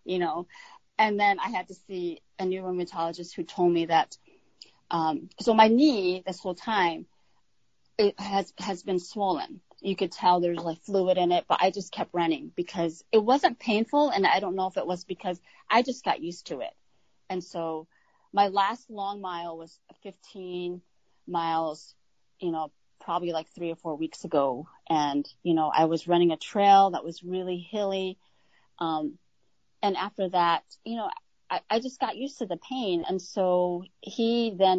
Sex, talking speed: female, 185 wpm